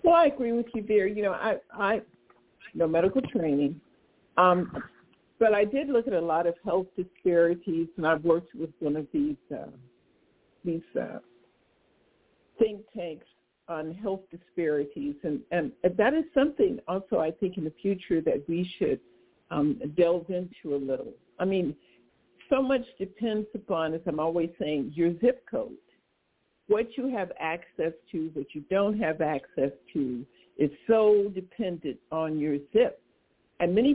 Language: English